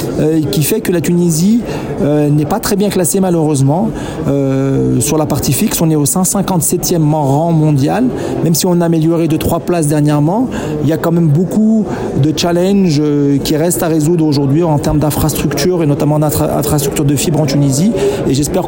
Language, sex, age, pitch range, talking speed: Arabic, male, 40-59, 145-180 Hz, 180 wpm